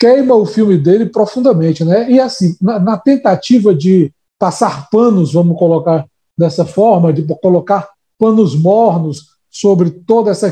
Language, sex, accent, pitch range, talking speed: Portuguese, male, Brazilian, 180-235 Hz, 145 wpm